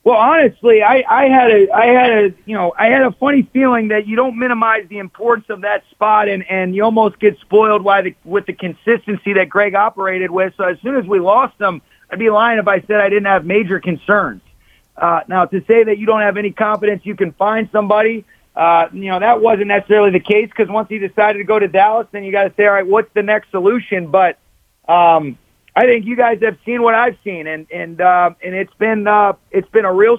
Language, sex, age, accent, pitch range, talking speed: English, male, 30-49, American, 195-225 Hz, 240 wpm